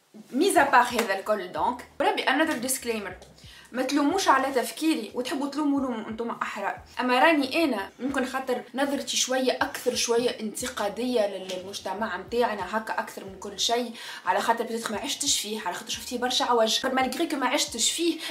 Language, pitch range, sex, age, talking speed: Arabic, 225-310 Hz, female, 20-39, 150 wpm